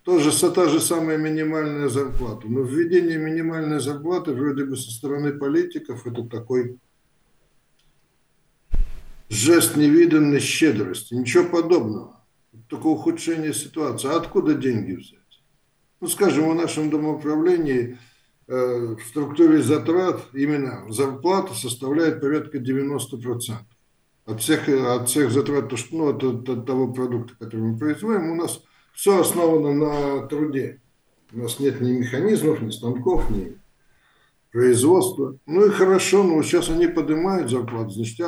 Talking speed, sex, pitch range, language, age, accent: 130 wpm, male, 125-160 Hz, Russian, 60-79, native